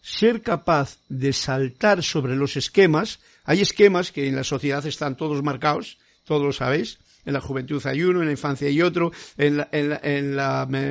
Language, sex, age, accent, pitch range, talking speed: Spanish, male, 50-69, Spanish, 140-195 Hz, 195 wpm